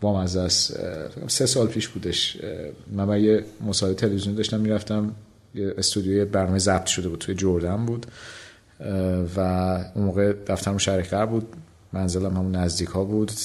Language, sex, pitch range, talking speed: Persian, male, 95-110 Hz, 135 wpm